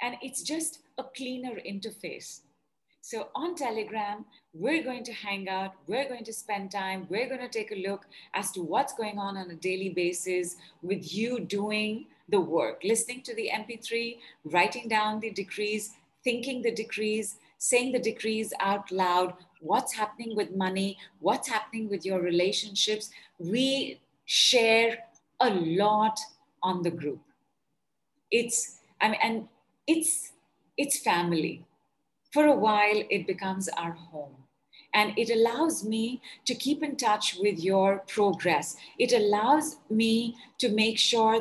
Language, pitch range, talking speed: English, 190-235 Hz, 145 wpm